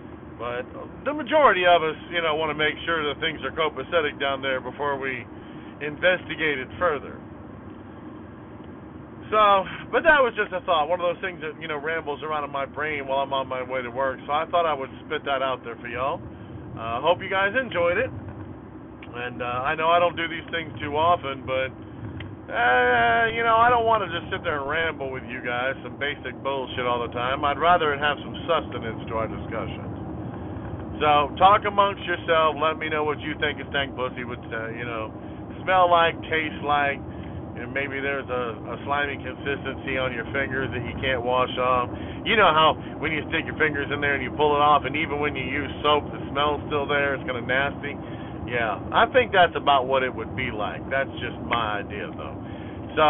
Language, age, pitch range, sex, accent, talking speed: English, 40-59, 125-160 Hz, male, American, 210 wpm